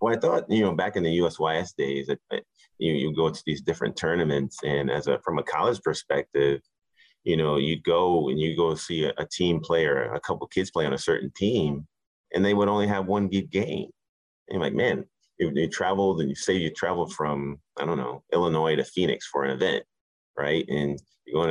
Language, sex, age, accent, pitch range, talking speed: English, male, 30-49, American, 75-85 Hz, 225 wpm